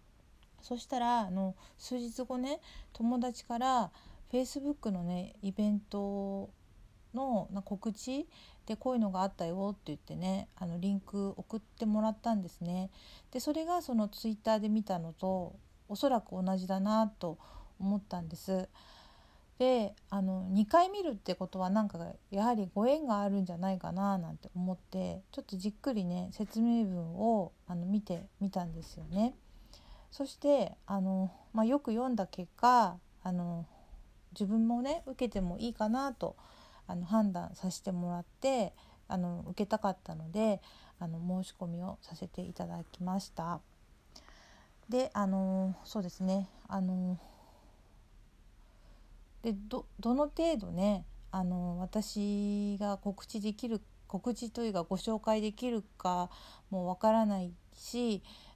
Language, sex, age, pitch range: Japanese, female, 40-59, 185-230 Hz